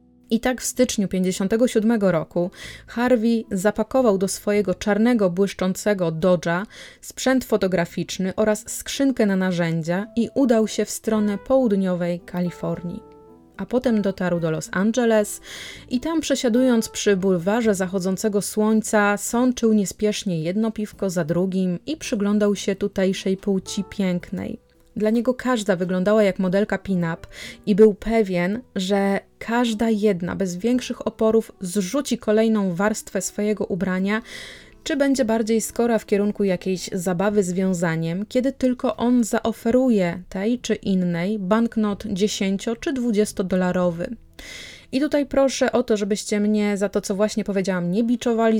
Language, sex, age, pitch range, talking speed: Polish, female, 30-49, 190-230 Hz, 130 wpm